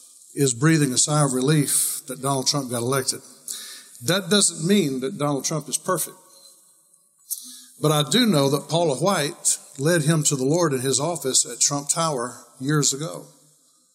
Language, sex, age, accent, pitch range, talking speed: English, male, 60-79, American, 135-170 Hz, 170 wpm